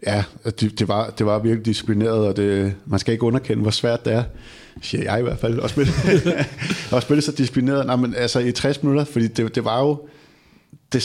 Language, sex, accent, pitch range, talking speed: Danish, male, native, 110-130 Hz, 205 wpm